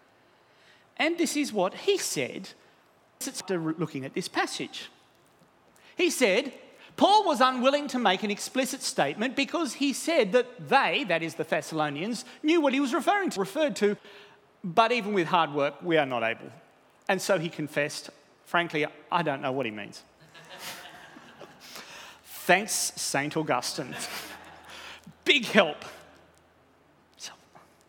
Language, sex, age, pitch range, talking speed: English, male, 40-59, 155-255 Hz, 140 wpm